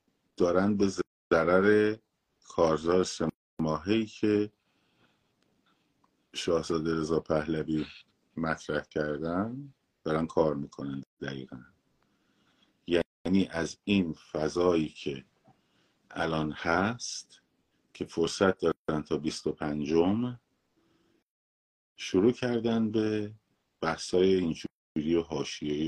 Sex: male